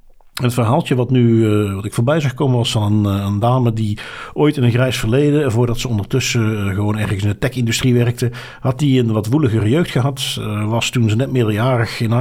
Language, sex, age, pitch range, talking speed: Dutch, male, 50-69, 115-140 Hz, 225 wpm